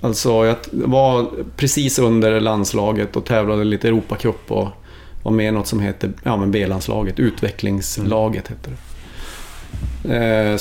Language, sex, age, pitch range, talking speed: English, male, 30-49, 100-120 Hz, 130 wpm